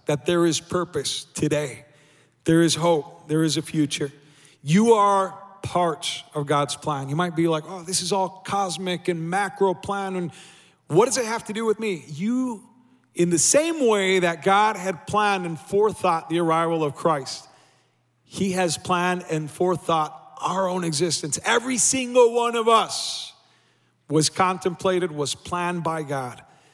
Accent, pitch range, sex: American, 150-200 Hz, male